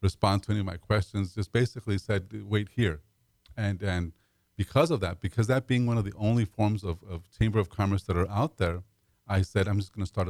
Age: 40-59